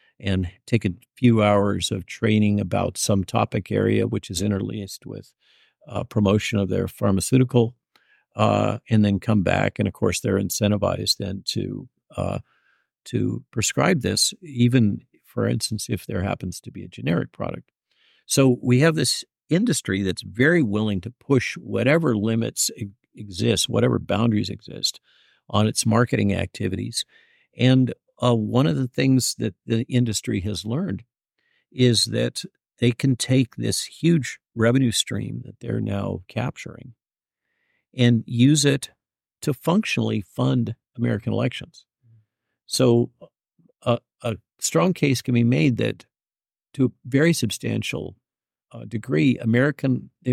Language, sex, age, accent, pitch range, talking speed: English, male, 50-69, American, 105-130 Hz, 140 wpm